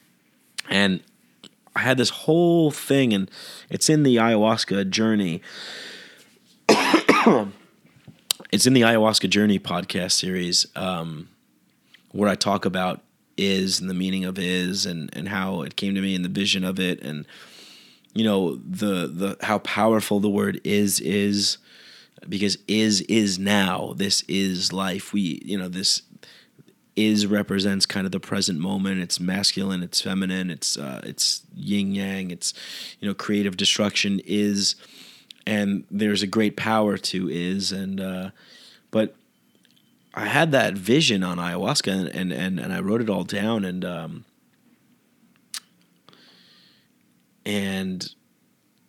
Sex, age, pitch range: male, 30-49, 95-105 Hz